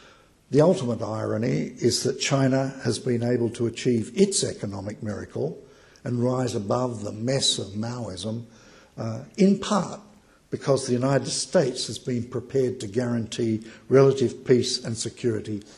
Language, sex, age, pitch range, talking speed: English, male, 60-79, 110-135 Hz, 140 wpm